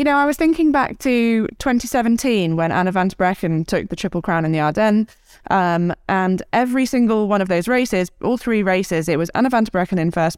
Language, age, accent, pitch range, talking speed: English, 20-39, British, 160-210 Hz, 225 wpm